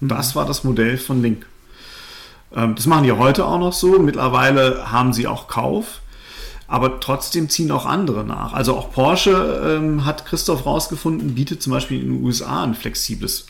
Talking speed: 170 wpm